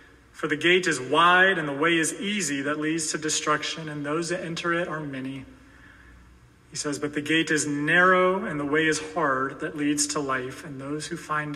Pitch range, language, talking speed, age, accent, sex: 135-180 Hz, English, 215 wpm, 30-49, American, male